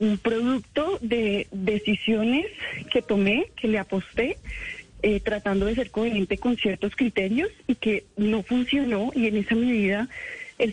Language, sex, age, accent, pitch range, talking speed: Spanish, female, 30-49, Colombian, 200-245 Hz, 145 wpm